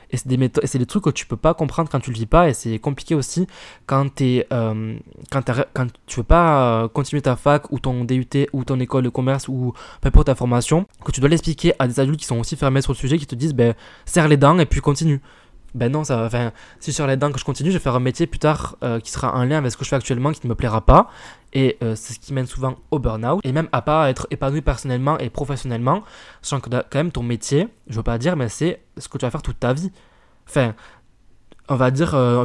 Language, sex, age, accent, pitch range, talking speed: French, male, 20-39, French, 120-150 Hz, 280 wpm